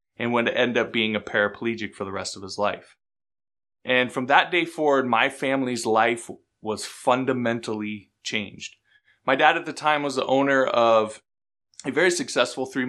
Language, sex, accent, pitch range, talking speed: English, male, American, 110-140 Hz, 170 wpm